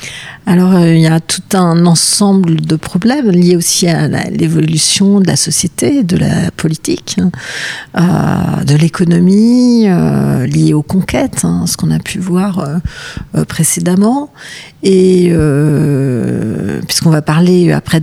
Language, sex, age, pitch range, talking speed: French, female, 50-69, 155-190 Hz, 145 wpm